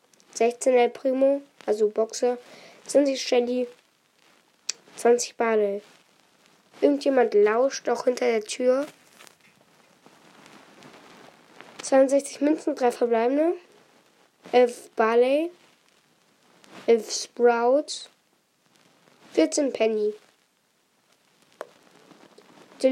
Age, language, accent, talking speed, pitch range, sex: 10-29, German, German, 70 wpm, 245-310 Hz, female